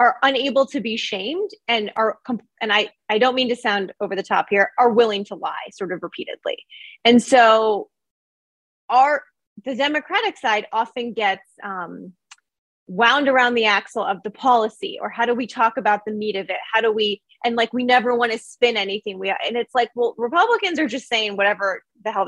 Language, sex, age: English, female, 30-49